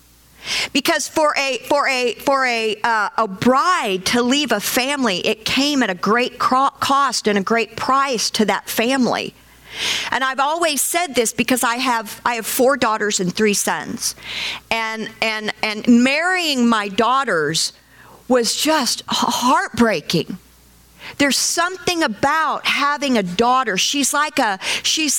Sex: female